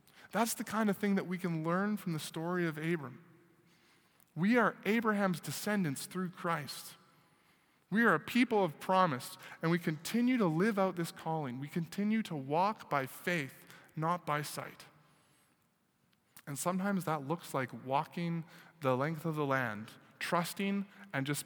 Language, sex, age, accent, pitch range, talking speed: English, male, 20-39, American, 135-180 Hz, 160 wpm